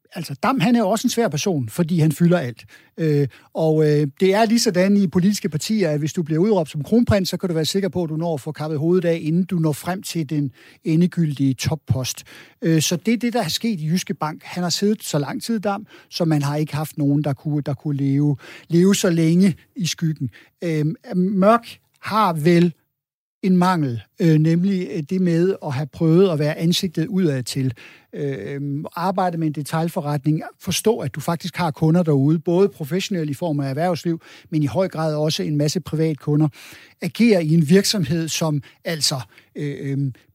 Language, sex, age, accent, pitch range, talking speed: Danish, male, 60-79, native, 150-190 Hz, 205 wpm